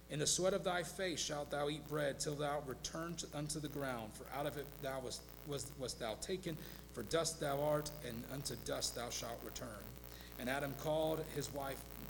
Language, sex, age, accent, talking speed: English, male, 40-59, American, 205 wpm